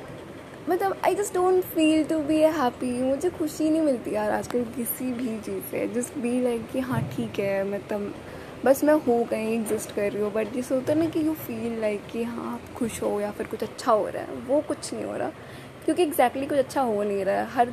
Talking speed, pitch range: 230 wpm, 220-270 Hz